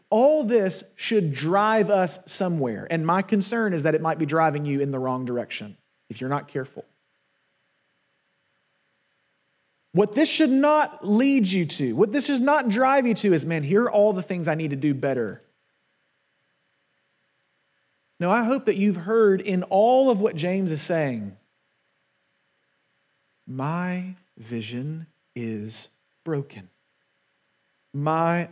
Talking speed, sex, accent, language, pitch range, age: 145 wpm, male, American, English, 145-195 Hz, 40-59